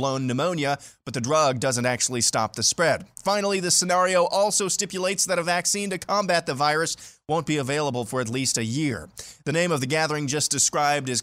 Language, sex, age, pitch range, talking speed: English, male, 20-39, 130-175 Hz, 200 wpm